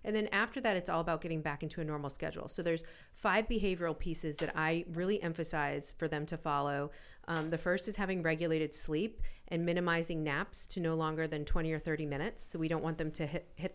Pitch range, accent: 155-180 Hz, American